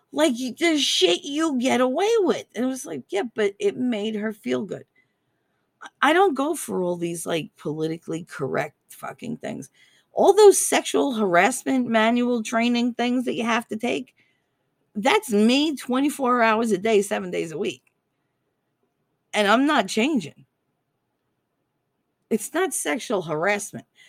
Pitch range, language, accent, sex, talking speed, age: 150-245 Hz, English, American, female, 145 wpm, 40-59